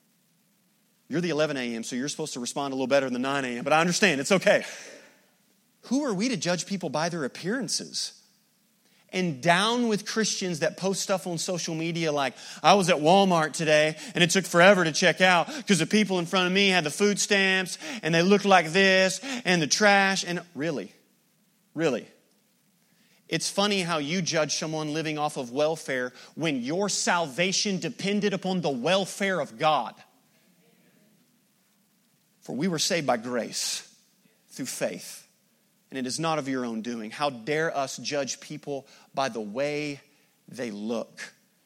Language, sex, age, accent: English, male, 30-49, American